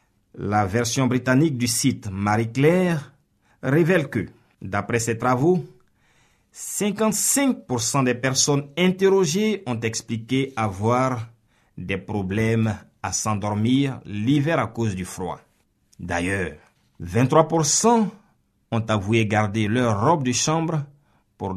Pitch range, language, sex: 100-145 Hz, French, male